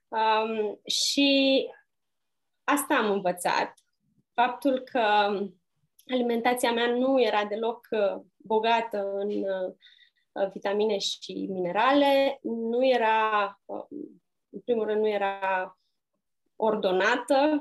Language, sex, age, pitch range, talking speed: Romanian, female, 20-39, 195-275 Hz, 85 wpm